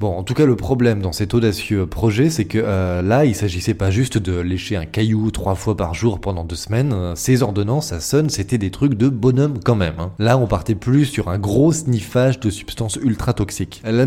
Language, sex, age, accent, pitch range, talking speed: French, male, 20-39, French, 100-135 Hz, 230 wpm